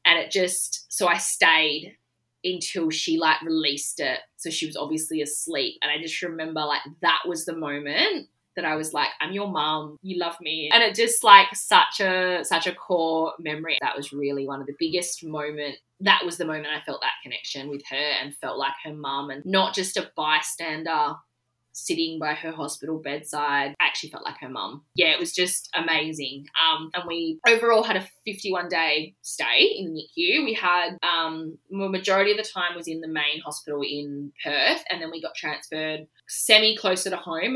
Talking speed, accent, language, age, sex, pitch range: 200 wpm, Australian, English, 20-39, female, 150-190 Hz